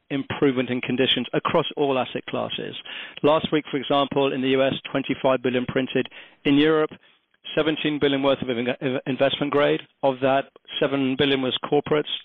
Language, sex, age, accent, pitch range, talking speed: English, male, 40-59, British, 125-145 Hz, 150 wpm